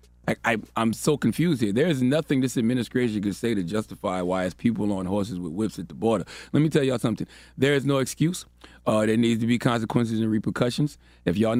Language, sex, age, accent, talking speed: English, male, 30-49, American, 215 wpm